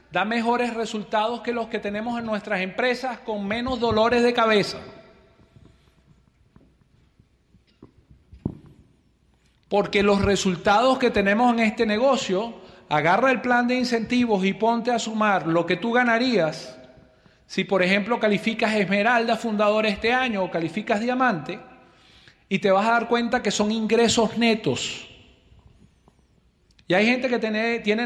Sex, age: male, 40-59